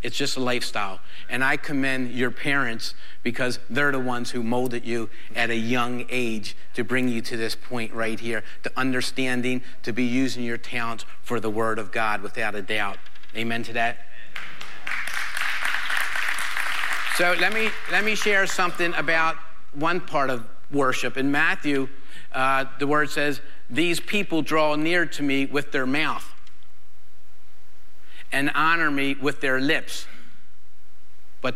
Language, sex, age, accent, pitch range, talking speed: English, male, 50-69, American, 110-135 Hz, 150 wpm